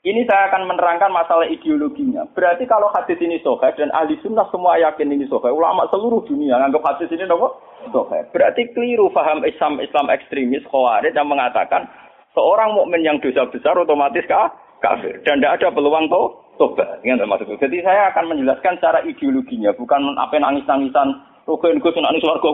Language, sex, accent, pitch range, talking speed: Indonesian, male, native, 155-240 Hz, 160 wpm